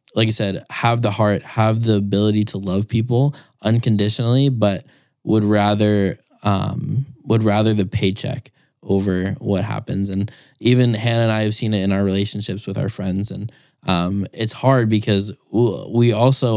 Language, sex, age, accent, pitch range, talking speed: English, male, 10-29, American, 100-115 Hz, 165 wpm